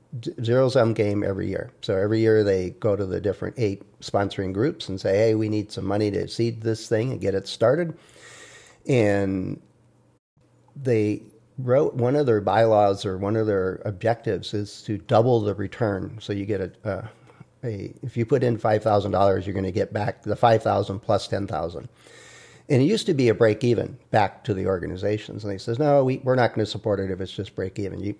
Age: 50-69